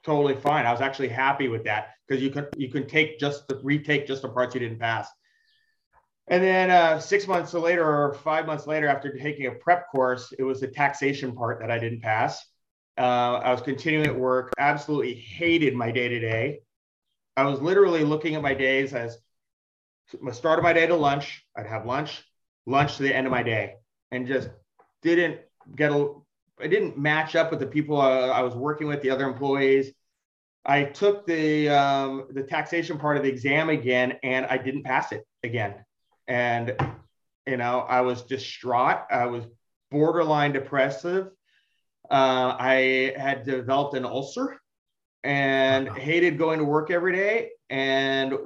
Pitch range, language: 130-155 Hz, English